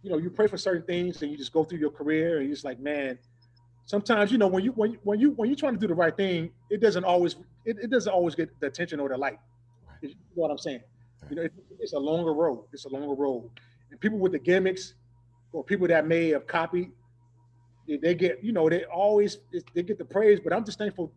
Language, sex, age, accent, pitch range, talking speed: English, male, 30-49, American, 130-175 Hz, 255 wpm